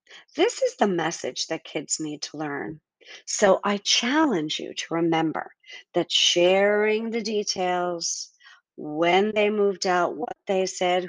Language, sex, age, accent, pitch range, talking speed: English, female, 50-69, American, 165-240 Hz, 140 wpm